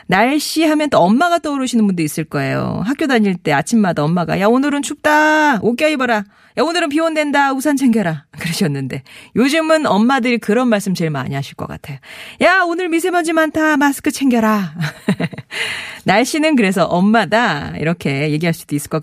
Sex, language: female, Korean